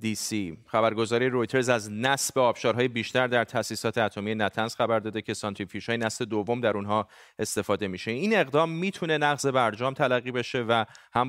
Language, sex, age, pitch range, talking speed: Persian, male, 30-49, 110-145 Hz, 165 wpm